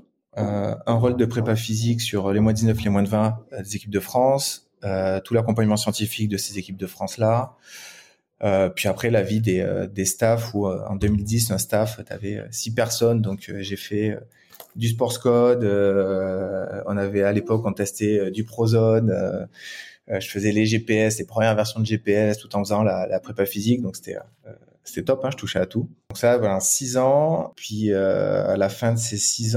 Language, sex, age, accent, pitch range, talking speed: French, male, 20-39, French, 100-115 Hz, 205 wpm